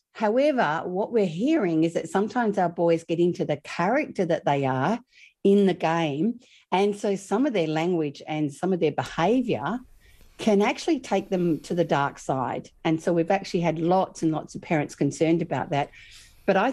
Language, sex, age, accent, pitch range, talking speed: English, female, 50-69, Australian, 160-210 Hz, 190 wpm